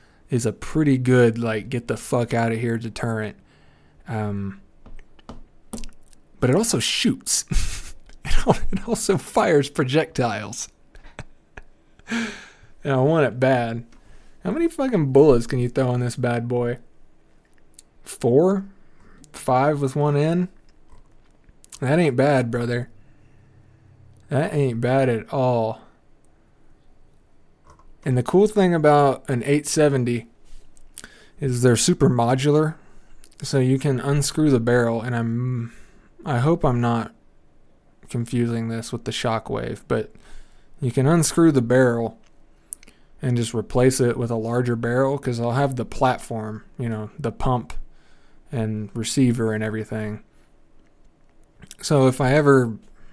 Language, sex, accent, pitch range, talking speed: English, male, American, 115-140 Hz, 125 wpm